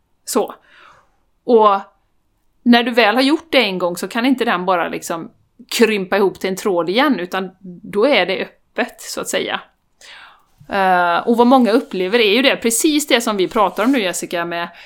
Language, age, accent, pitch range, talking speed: Swedish, 30-49, native, 185-250 Hz, 185 wpm